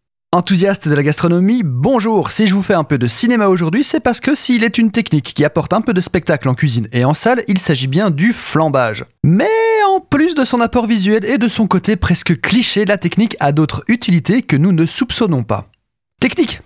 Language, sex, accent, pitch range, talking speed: French, male, French, 135-210 Hz, 220 wpm